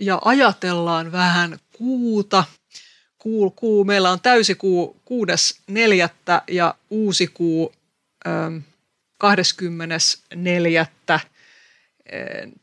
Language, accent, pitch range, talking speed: Finnish, native, 165-195 Hz, 70 wpm